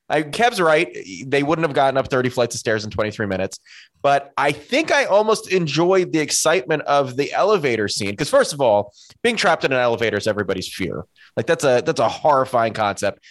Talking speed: 205 wpm